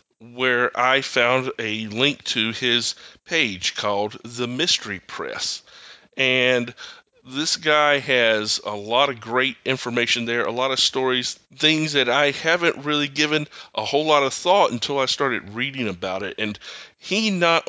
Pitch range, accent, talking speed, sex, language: 120-140 Hz, American, 155 wpm, male, English